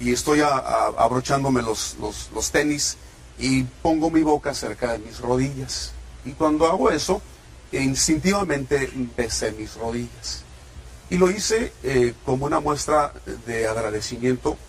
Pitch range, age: 105-150 Hz, 40-59